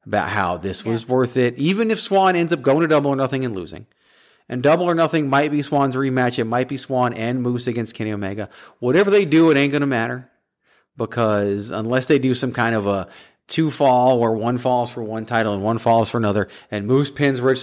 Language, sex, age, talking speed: English, male, 30-49, 230 wpm